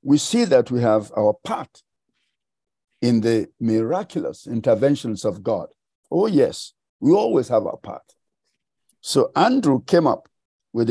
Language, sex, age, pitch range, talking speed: English, male, 60-79, 115-165 Hz, 140 wpm